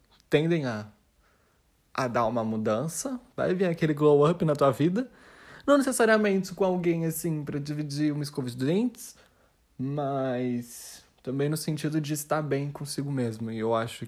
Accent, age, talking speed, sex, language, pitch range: Brazilian, 20-39, 160 wpm, male, Portuguese, 120-175 Hz